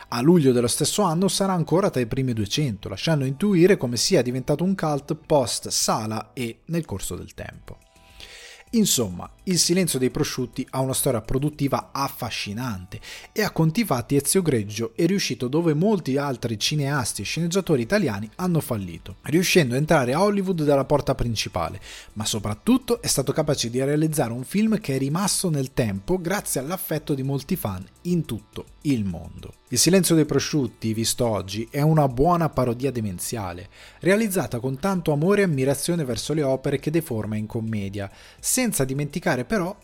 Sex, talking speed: male, 165 wpm